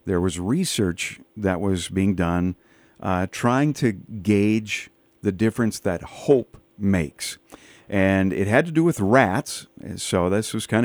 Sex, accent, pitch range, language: male, American, 95-120 Hz, English